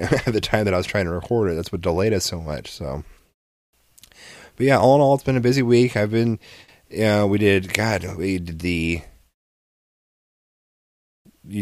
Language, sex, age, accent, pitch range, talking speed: English, male, 30-49, American, 90-105 Hz, 200 wpm